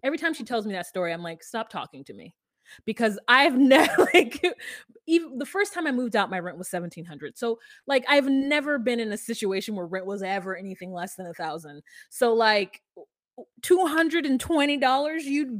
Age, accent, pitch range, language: 20-39, American, 195-285 Hz, English